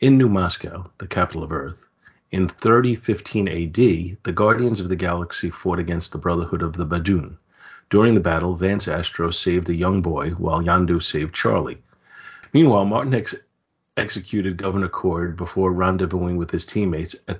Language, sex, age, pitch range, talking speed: English, male, 40-59, 85-105 Hz, 160 wpm